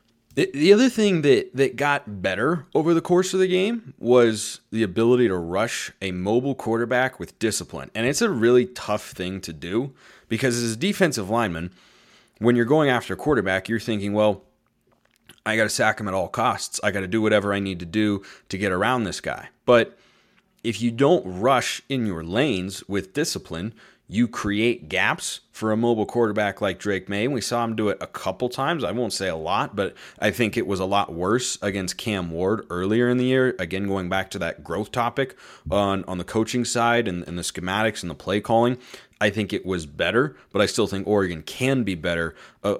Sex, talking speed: male, 210 wpm